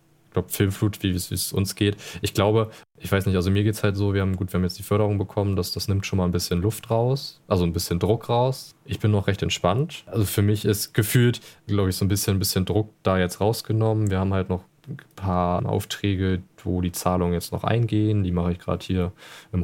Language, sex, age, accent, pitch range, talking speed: German, male, 20-39, German, 90-110 Hz, 245 wpm